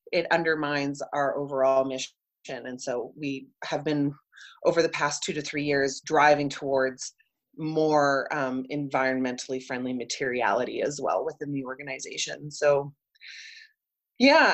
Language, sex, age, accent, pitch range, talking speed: English, female, 30-49, American, 145-180 Hz, 130 wpm